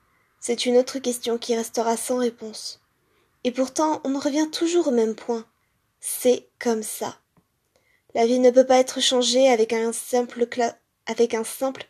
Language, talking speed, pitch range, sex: French, 155 wpm, 230-270 Hz, female